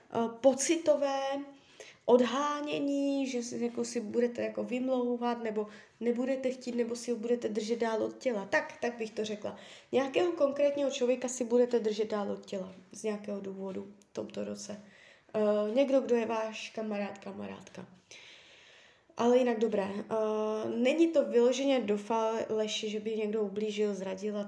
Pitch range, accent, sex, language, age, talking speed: 210-260 Hz, native, female, Czech, 20-39, 145 wpm